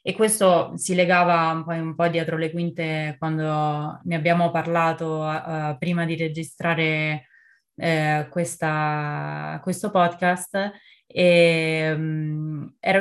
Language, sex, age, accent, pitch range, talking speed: Italian, female, 20-39, native, 155-175 Hz, 90 wpm